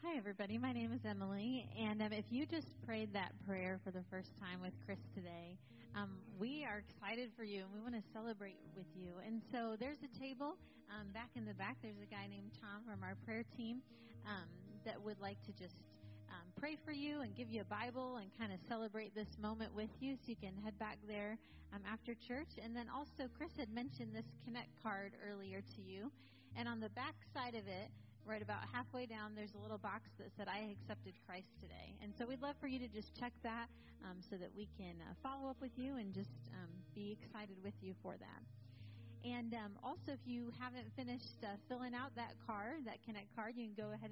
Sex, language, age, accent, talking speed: female, English, 30-49, American, 225 wpm